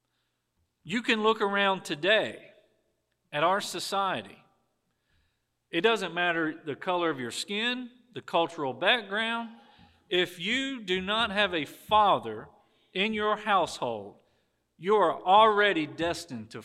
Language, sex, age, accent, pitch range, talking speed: English, male, 40-59, American, 165-215 Hz, 125 wpm